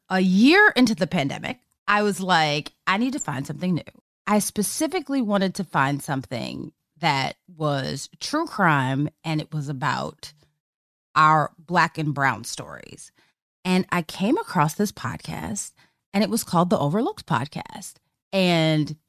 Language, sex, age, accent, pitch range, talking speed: English, female, 30-49, American, 155-210 Hz, 150 wpm